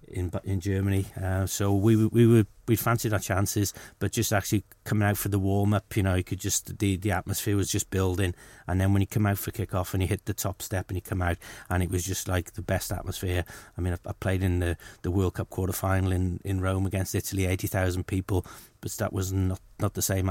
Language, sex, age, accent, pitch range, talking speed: English, male, 30-49, British, 95-105 Hz, 255 wpm